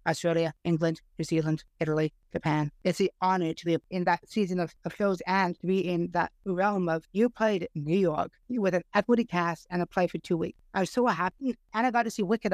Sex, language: female, English